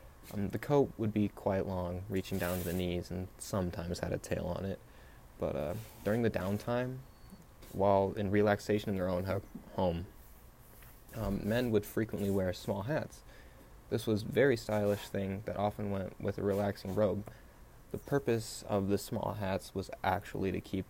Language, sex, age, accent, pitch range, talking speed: English, male, 20-39, American, 95-105 Hz, 180 wpm